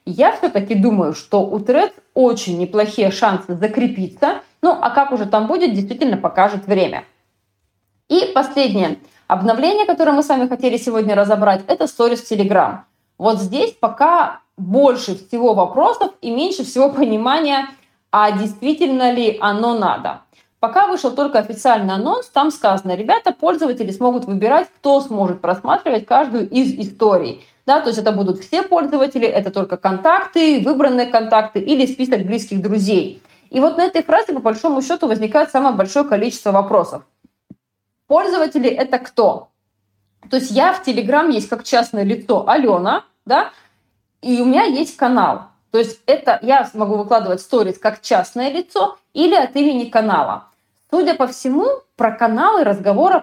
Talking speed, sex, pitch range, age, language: 145 wpm, female, 210-285 Hz, 20-39, Russian